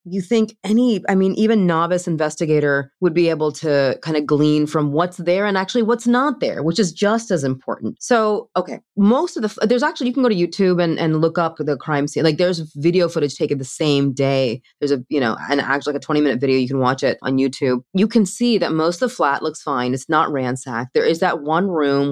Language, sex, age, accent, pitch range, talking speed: English, female, 20-39, American, 140-190 Hz, 245 wpm